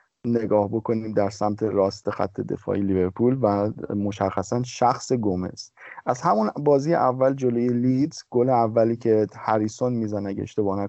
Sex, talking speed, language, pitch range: male, 140 wpm, Persian, 115-150 Hz